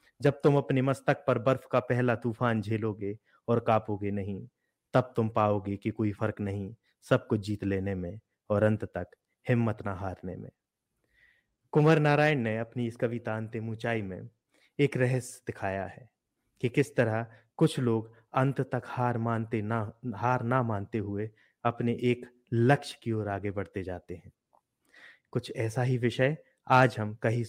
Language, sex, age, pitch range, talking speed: Hindi, male, 30-49, 105-130 Hz, 165 wpm